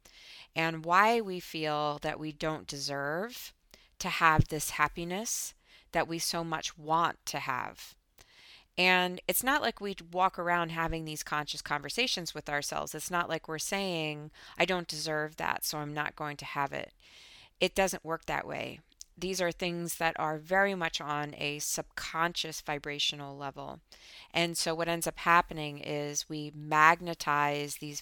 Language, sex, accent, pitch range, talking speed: English, female, American, 145-170 Hz, 160 wpm